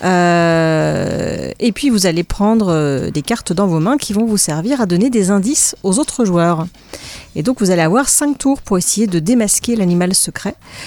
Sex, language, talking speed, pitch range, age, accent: female, French, 200 wpm, 170-220 Hz, 40-59, French